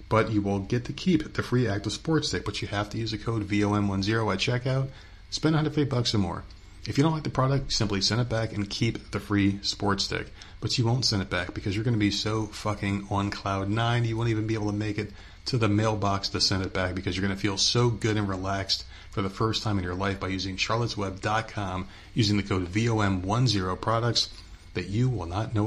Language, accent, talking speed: English, American, 245 wpm